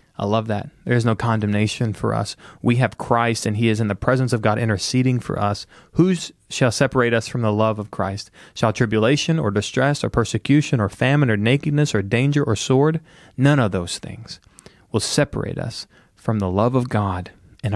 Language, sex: English, male